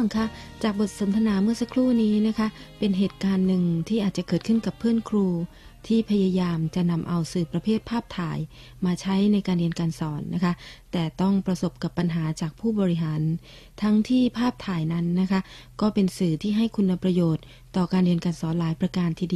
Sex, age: female, 30-49